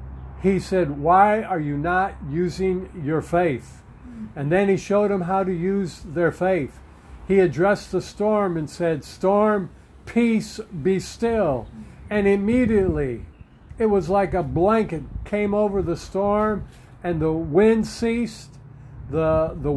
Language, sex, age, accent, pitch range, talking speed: English, male, 50-69, American, 155-195 Hz, 140 wpm